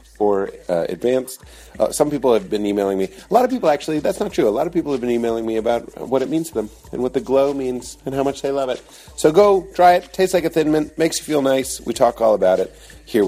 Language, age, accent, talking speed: English, 40-59, American, 280 wpm